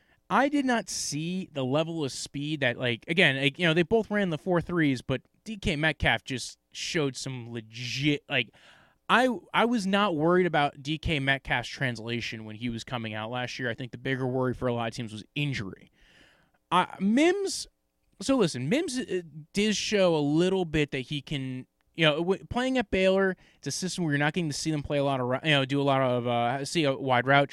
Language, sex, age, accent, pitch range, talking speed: English, male, 20-39, American, 130-165 Hz, 215 wpm